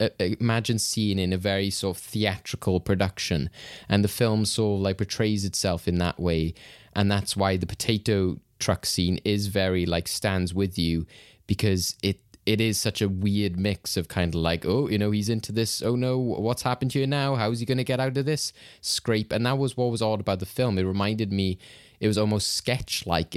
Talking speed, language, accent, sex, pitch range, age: 220 wpm, English, British, male, 90-110 Hz, 20-39